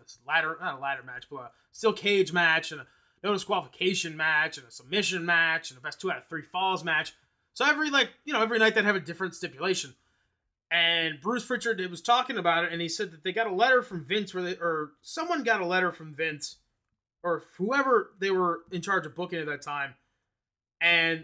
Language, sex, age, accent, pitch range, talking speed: English, male, 20-39, American, 165-215 Hz, 215 wpm